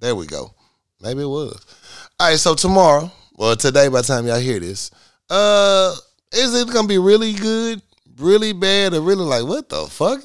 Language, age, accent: English, 30-49, American